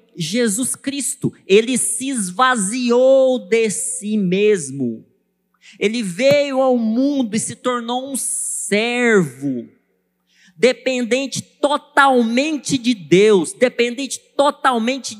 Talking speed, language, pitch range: 90 wpm, Portuguese, 185-250 Hz